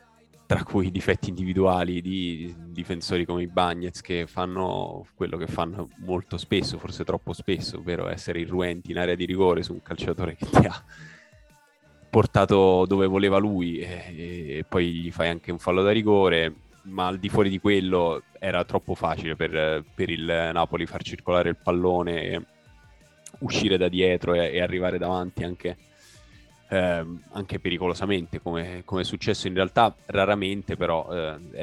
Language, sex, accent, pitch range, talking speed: Italian, male, native, 85-95 Hz, 155 wpm